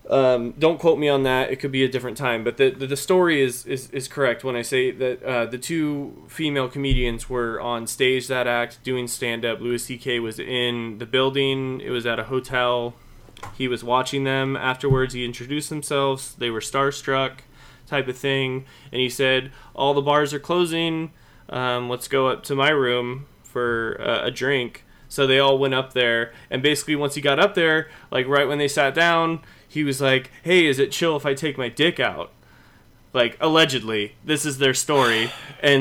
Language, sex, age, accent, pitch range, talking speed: English, male, 20-39, American, 125-150 Hz, 200 wpm